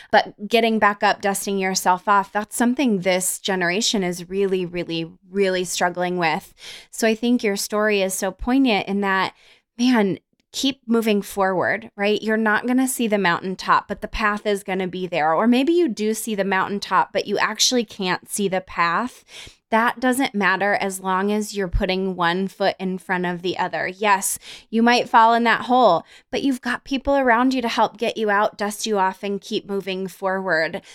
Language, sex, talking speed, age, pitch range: English, female, 195 wpm, 20-39, 185-220 Hz